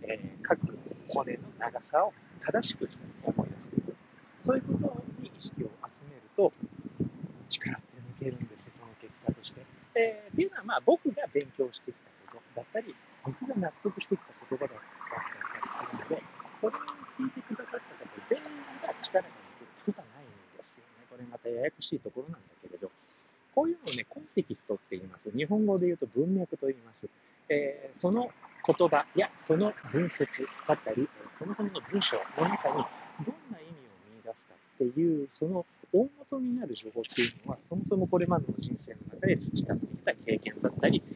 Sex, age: male, 40-59